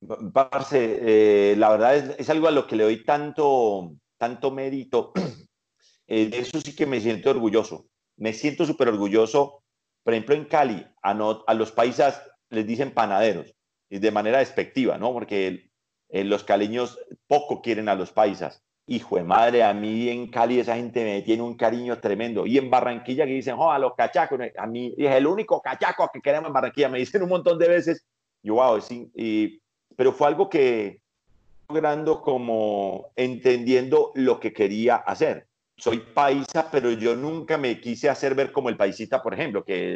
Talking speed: 180 wpm